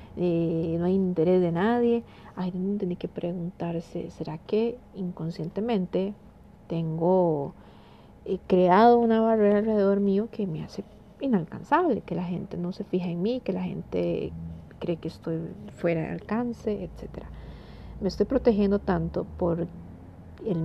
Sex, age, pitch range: female, 40-59, 165-195 Hz